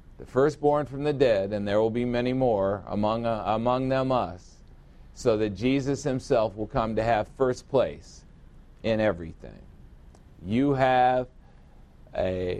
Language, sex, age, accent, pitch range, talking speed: English, male, 50-69, American, 110-145 Hz, 150 wpm